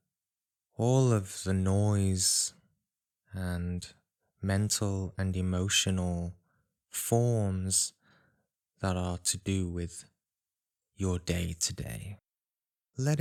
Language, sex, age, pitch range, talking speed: English, male, 20-39, 90-105 Hz, 85 wpm